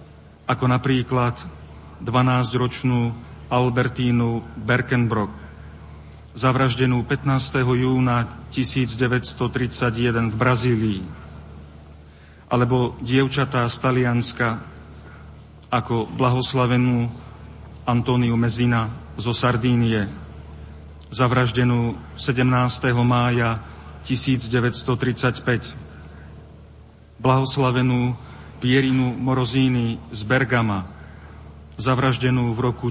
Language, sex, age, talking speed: Slovak, male, 40-59, 60 wpm